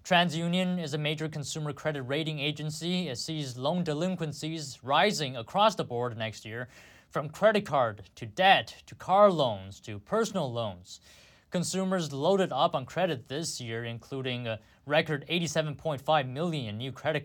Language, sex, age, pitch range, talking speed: English, male, 20-39, 125-165 Hz, 150 wpm